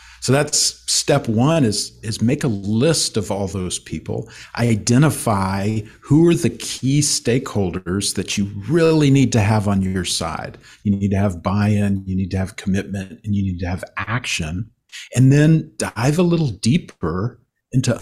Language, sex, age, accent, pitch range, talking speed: English, male, 50-69, American, 100-130 Hz, 170 wpm